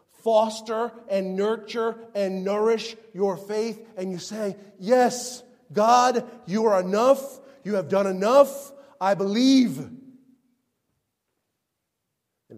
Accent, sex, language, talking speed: American, male, English, 105 wpm